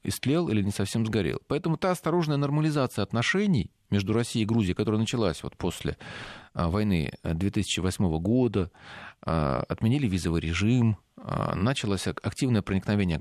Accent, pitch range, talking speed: native, 95-135 Hz, 120 wpm